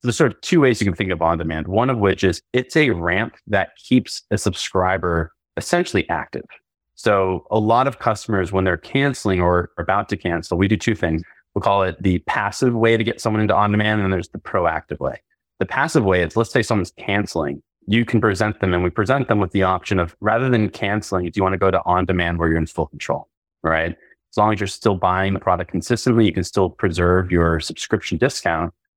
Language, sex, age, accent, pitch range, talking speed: English, male, 30-49, American, 90-110 Hz, 225 wpm